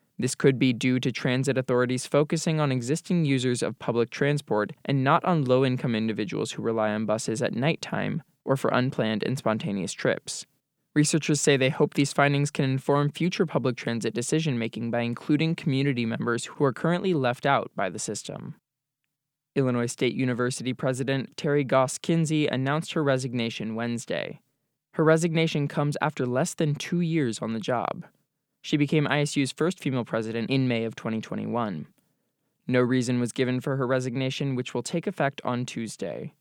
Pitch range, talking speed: 120-150 Hz, 165 wpm